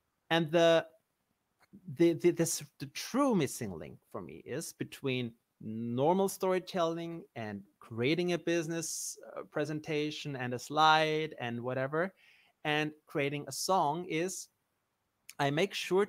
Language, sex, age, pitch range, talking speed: English, male, 30-49, 125-165 Hz, 125 wpm